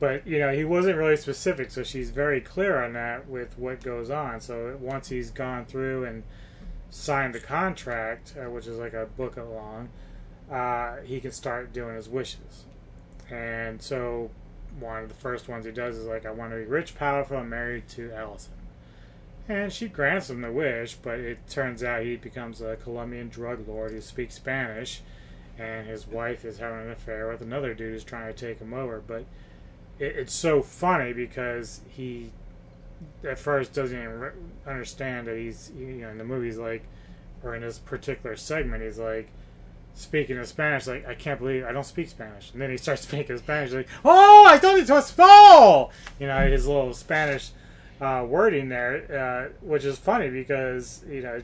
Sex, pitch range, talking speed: male, 115-135 Hz, 190 wpm